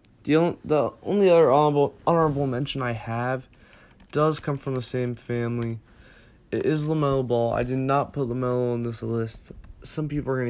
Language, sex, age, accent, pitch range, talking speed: English, male, 20-39, American, 125-150 Hz, 170 wpm